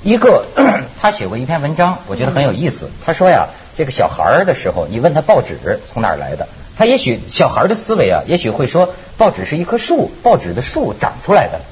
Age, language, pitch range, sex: 50-69, Chinese, 130-215 Hz, male